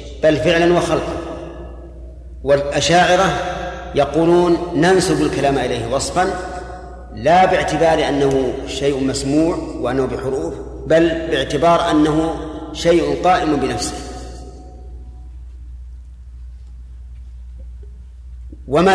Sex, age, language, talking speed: male, 40-59, Arabic, 75 wpm